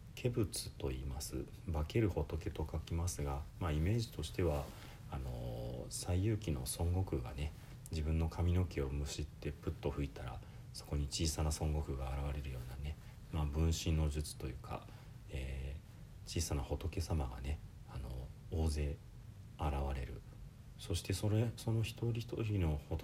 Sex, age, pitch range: male, 40-59, 75-105 Hz